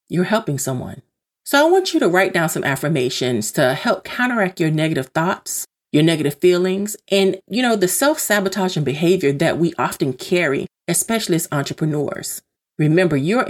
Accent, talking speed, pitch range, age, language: American, 170 wpm, 150-195 Hz, 40-59, English